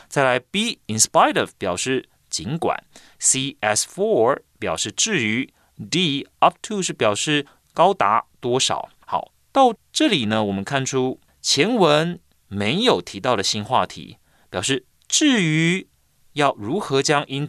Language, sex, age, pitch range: Chinese, male, 30-49, 105-170 Hz